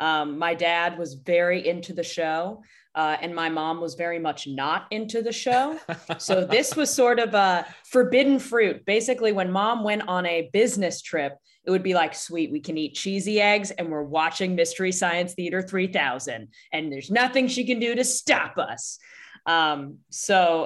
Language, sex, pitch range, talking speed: English, female, 165-205 Hz, 185 wpm